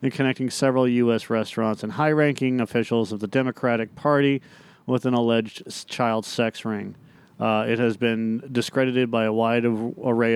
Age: 40-59